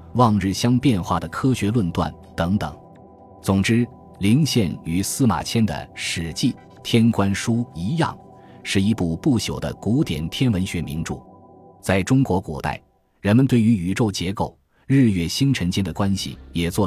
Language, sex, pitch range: Chinese, male, 80-110 Hz